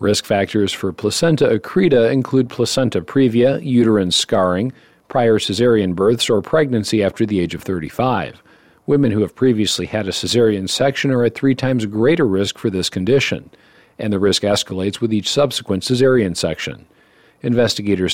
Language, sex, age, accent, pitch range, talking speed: English, male, 50-69, American, 100-130 Hz, 155 wpm